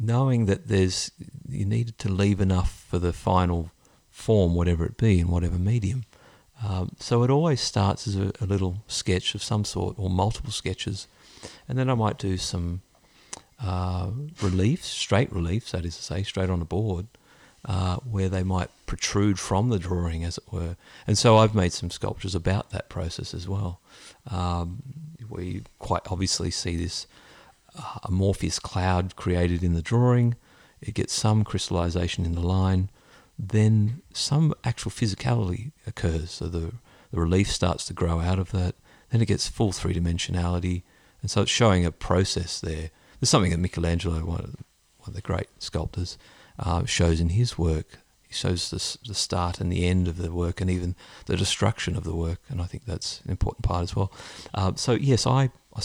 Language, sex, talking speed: English, male, 180 wpm